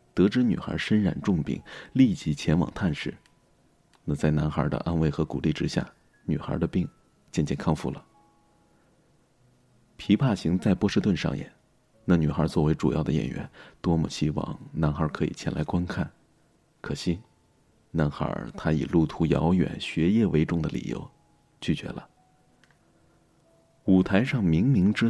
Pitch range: 75-95 Hz